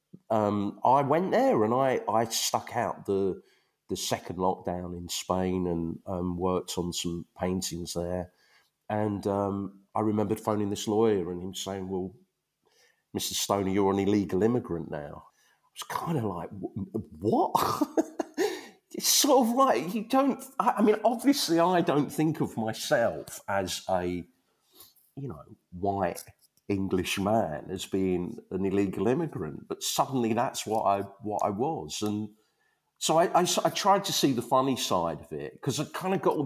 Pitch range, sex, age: 95-135 Hz, male, 40-59